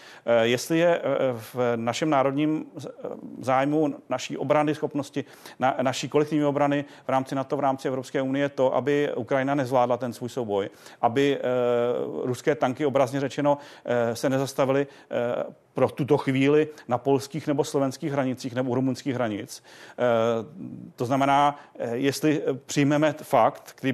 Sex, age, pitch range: male, 40-59, 125-145 Hz